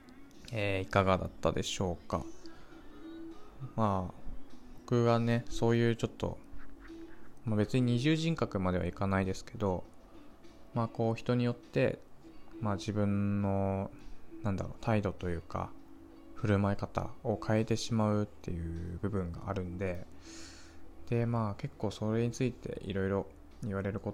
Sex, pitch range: male, 85-115 Hz